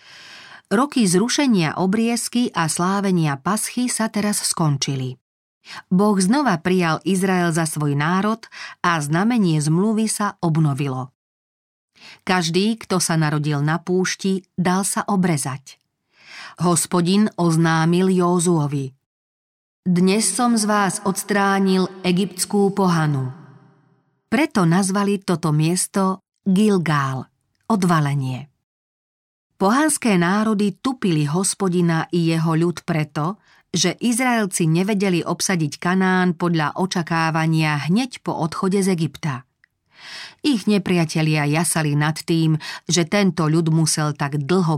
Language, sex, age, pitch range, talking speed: Slovak, female, 40-59, 155-200 Hz, 105 wpm